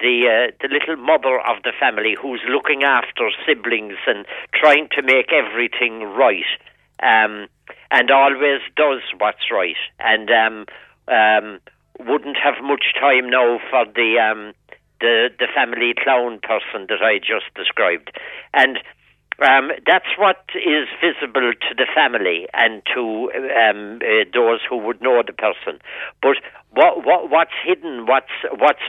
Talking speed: 145 wpm